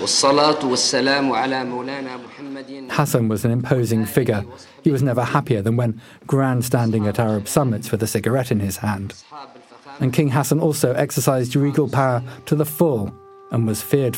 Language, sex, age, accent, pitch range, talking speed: English, male, 40-59, British, 115-145 Hz, 145 wpm